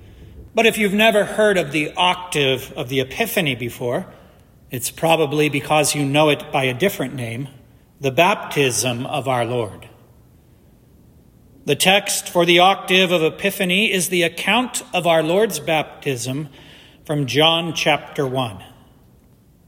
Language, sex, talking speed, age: English, male, 135 wpm, 40-59